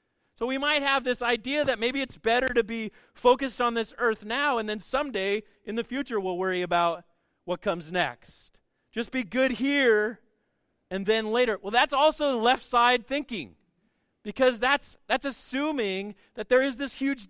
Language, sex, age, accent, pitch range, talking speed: English, male, 40-59, American, 190-250 Hz, 175 wpm